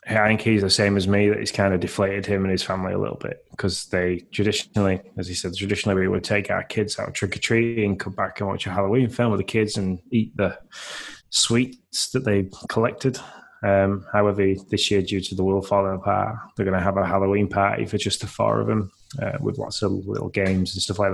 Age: 20-39